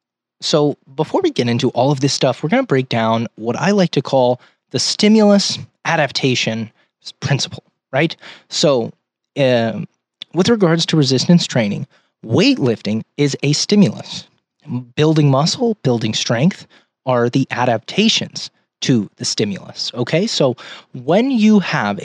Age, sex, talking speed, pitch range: 20-39, male, 135 wpm, 125-165 Hz